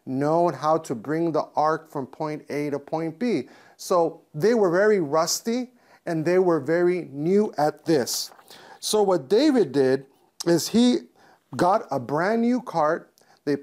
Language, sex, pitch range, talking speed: English, male, 150-195 Hz, 160 wpm